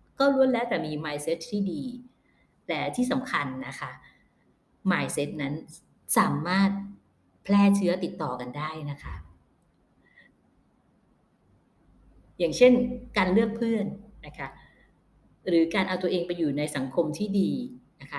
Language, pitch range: Thai, 145-200 Hz